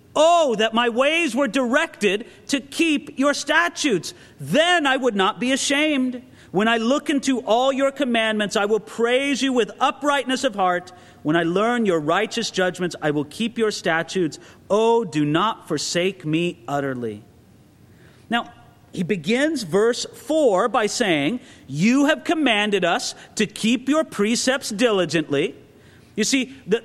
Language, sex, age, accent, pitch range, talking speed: English, male, 40-59, American, 200-290 Hz, 150 wpm